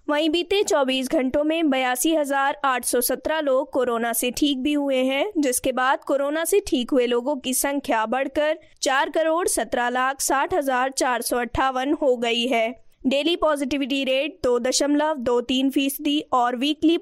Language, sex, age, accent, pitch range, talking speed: Hindi, female, 20-39, native, 255-300 Hz, 135 wpm